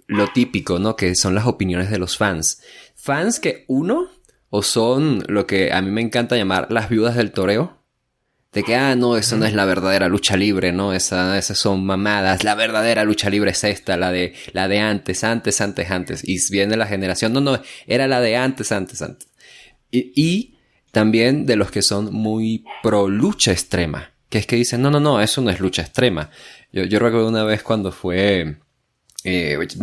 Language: Spanish